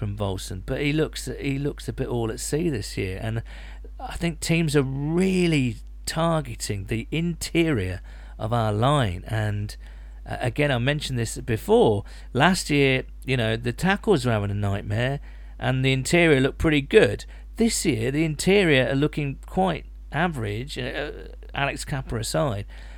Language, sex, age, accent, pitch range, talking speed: English, male, 40-59, British, 110-155 Hz, 155 wpm